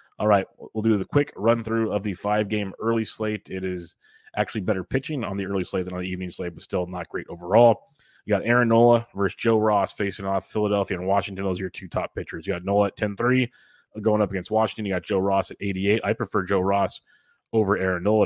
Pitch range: 95-110 Hz